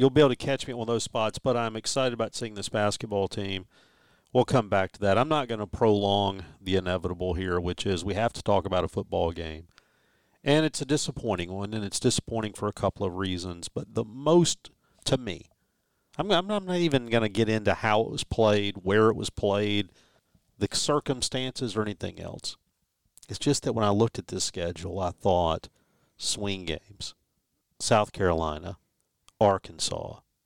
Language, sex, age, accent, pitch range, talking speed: English, male, 50-69, American, 95-120 Hz, 190 wpm